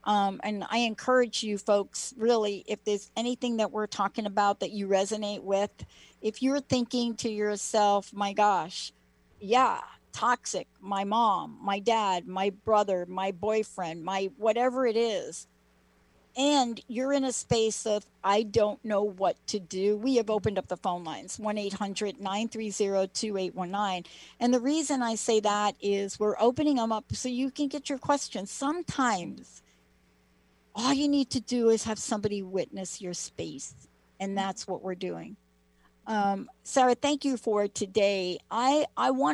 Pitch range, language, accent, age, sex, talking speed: 190-235 Hz, English, American, 50-69, female, 155 wpm